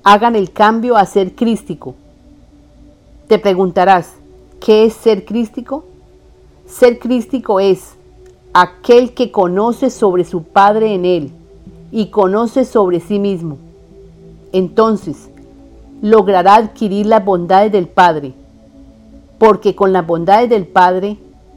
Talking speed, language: 115 wpm, Spanish